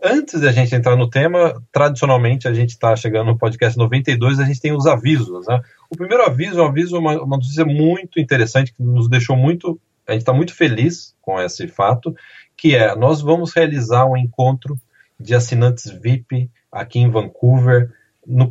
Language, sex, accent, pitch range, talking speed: Portuguese, male, Brazilian, 115-155 Hz, 180 wpm